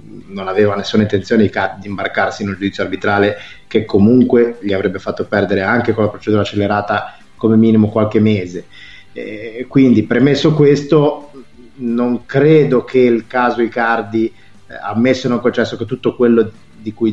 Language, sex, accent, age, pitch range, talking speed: Italian, male, native, 30-49, 105-125 Hz, 155 wpm